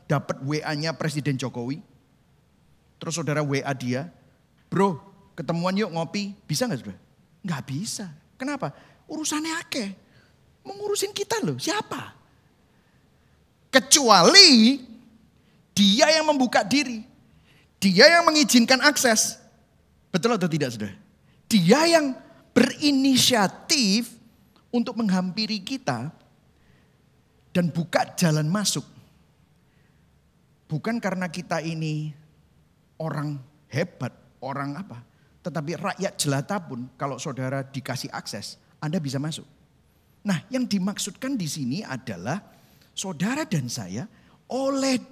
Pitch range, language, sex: 155-255 Hz, Indonesian, male